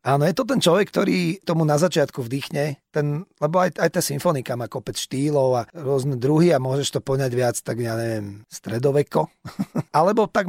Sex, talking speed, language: male, 185 wpm, Slovak